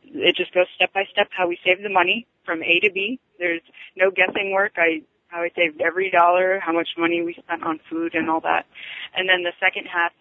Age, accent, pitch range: 20-39, American, 165-195 Hz